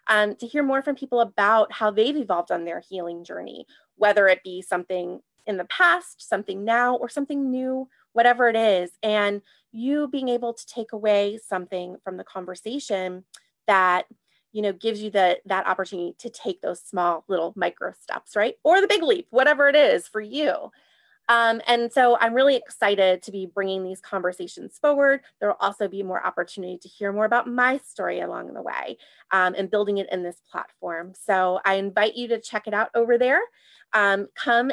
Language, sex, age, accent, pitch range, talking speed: English, female, 30-49, American, 190-255 Hz, 190 wpm